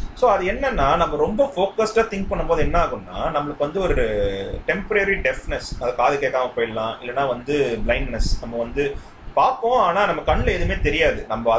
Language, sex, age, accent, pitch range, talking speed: Tamil, male, 30-49, native, 125-200 Hz, 165 wpm